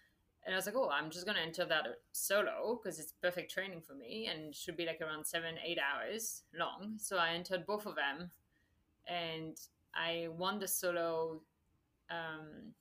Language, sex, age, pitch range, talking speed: English, female, 30-49, 165-195 Hz, 185 wpm